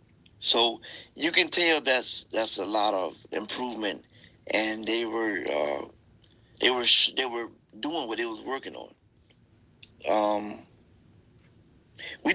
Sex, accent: male, American